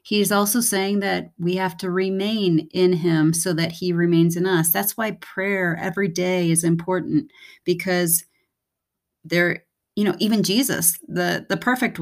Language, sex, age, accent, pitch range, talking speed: English, female, 30-49, American, 165-200 Hz, 160 wpm